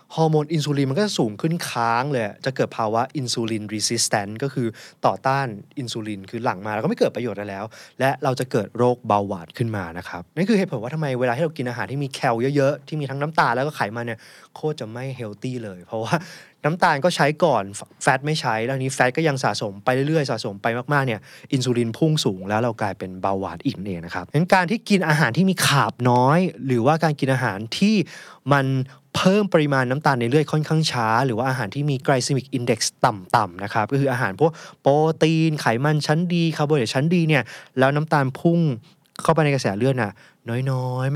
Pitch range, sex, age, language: 110-150 Hz, male, 20-39, Thai